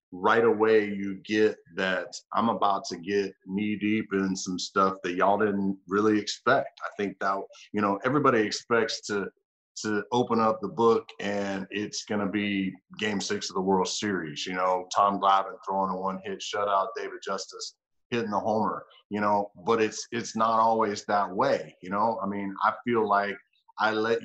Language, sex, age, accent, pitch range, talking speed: English, male, 30-49, American, 100-115 Hz, 185 wpm